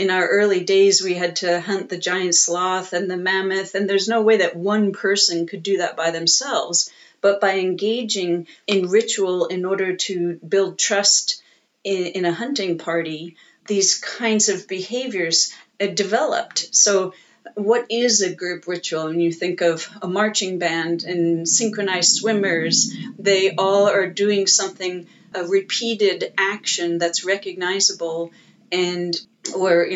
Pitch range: 175-205 Hz